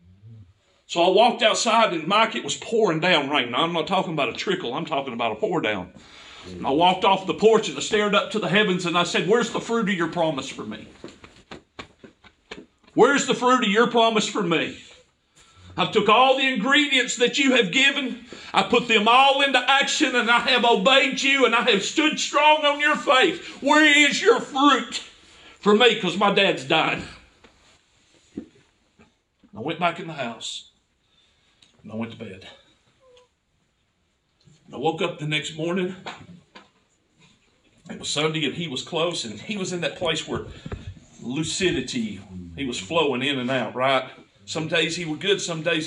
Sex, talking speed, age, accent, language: male, 185 wpm, 50-69, American, English